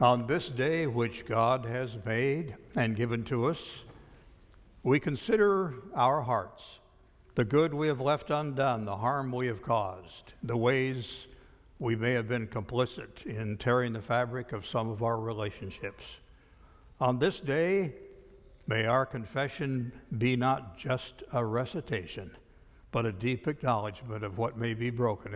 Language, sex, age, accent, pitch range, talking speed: English, male, 60-79, American, 110-125 Hz, 145 wpm